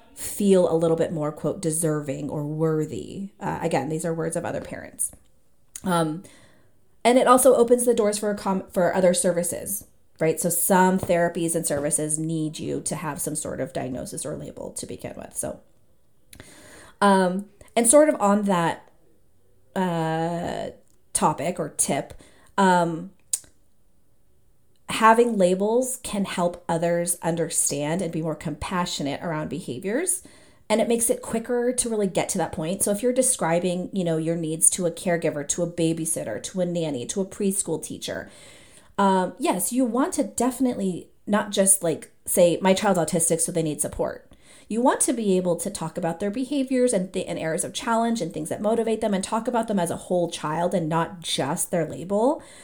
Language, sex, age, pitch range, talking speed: English, female, 30-49, 165-220 Hz, 180 wpm